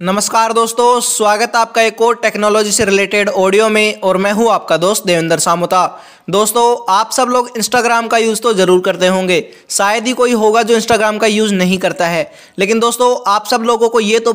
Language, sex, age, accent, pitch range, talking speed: Hindi, male, 20-39, native, 205-235 Hz, 205 wpm